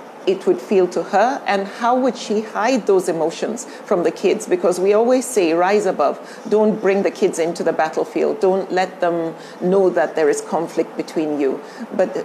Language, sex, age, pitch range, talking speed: English, female, 40-59, 170-220 Hz, 190 wpm